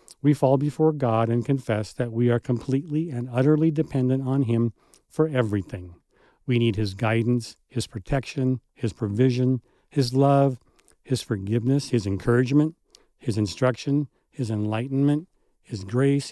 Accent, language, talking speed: American, English, 135 wpm